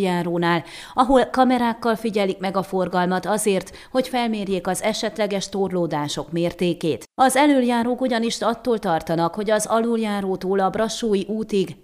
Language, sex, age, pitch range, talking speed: Hungarian, female, 30-49, 175-225 Hz, 120 wpm